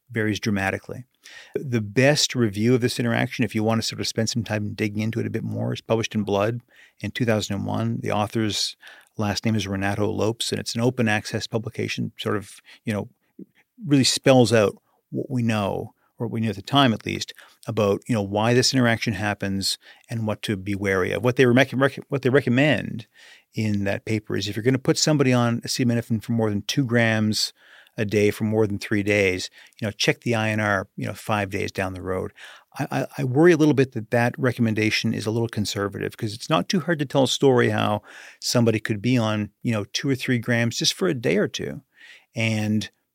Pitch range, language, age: 105-125 Hz, English, 40-59